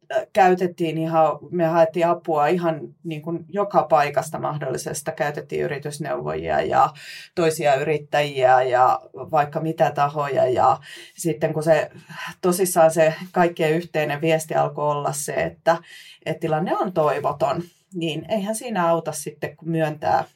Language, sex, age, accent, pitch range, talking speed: Finnish, female, 30-49, native, 155-175 Hz, 125 wpm